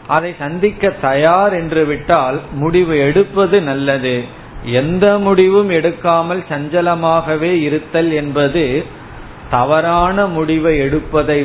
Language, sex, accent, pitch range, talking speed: Tamil, male, native, 135-170 Hz, 90 wpm